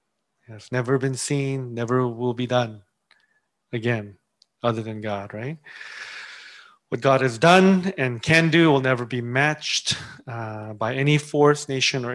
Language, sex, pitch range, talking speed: English, male, 115-140 Hz, 150 wpm